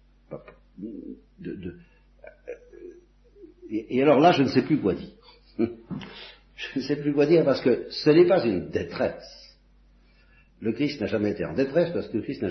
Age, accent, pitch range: 60-79, French, 105-170 Hz